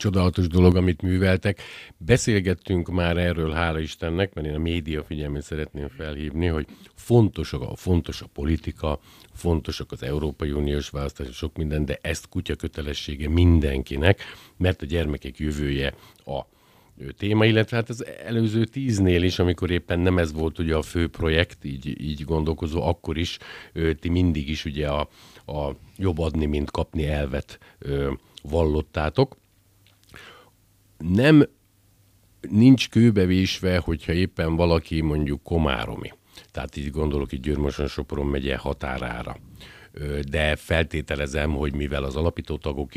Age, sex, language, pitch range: 50-69, male, Hungarian, 75-90 Hz